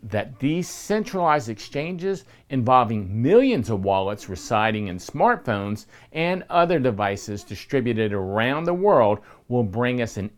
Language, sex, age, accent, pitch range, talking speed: English, male, 50-69, American, 110-160 Hz, 125 wpm